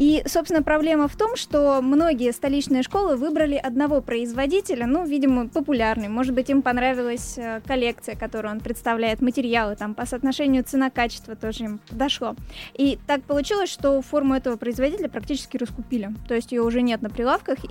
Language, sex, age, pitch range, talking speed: Russian, female, 20-39, 240-280 Hz, 160 wpm